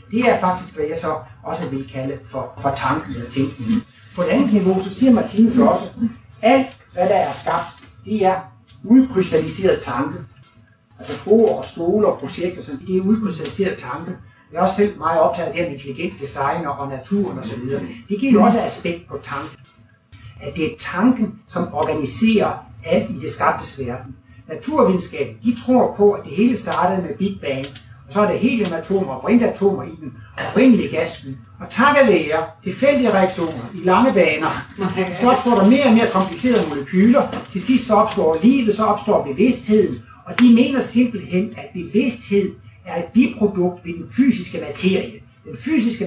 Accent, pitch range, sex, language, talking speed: native, 140-225 Hz, male, Danish, 180 wpm